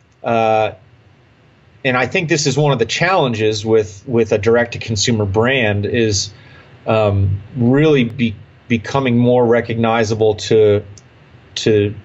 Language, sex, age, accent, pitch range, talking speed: English, male, 30-49, American, 105-125 Hz, 130 wpm